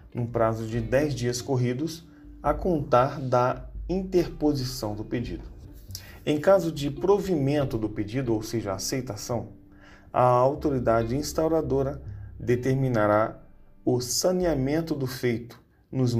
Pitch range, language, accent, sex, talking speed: 110-145 Hz, Portuguese, Brazilian, male, 110 wpm